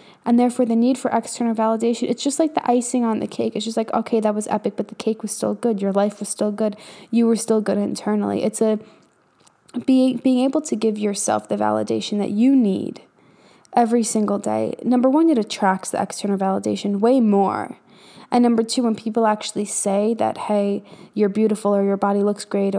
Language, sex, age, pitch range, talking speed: English, female, 10-29, 200-230 Hz, 205 wpm